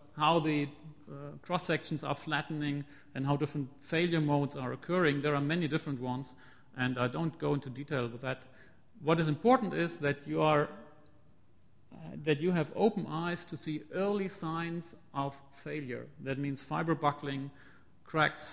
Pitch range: 130-165 Hz